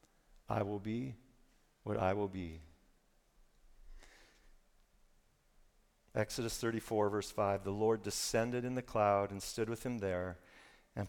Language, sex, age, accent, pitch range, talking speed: English, male, 50-69, American, 100-130 Hz, 125 wpm